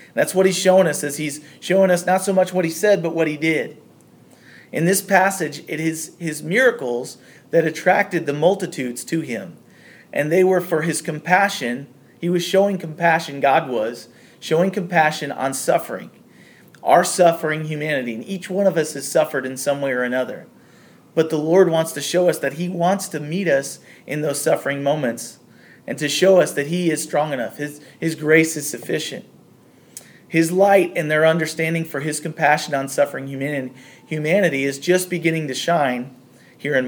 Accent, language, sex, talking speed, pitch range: American, English, male, 180 wpm, 145-180 Hz